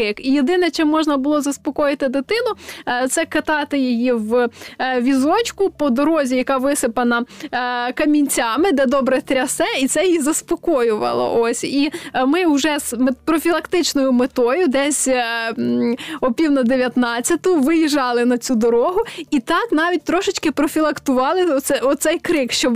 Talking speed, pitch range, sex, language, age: 130 wpm, 240-310 Hz, female, Ukrainian, 20-39